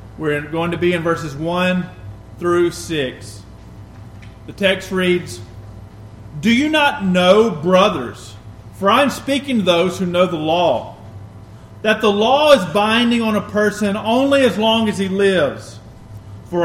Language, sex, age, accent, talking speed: English, male, 40-59, American, 150 wpm